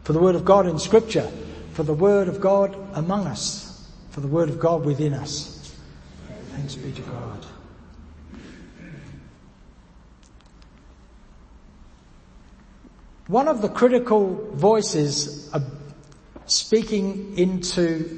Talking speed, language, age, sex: 105 wpm, English, 60-79, male